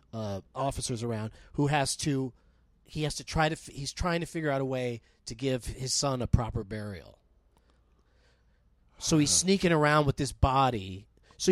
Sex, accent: male, American